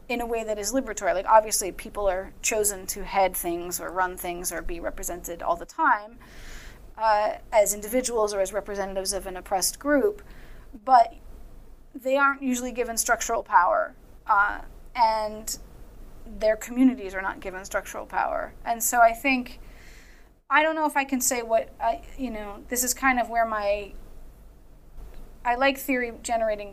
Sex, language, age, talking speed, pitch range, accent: female, English, 30-49, 165 wpm, 195-250 Hz, American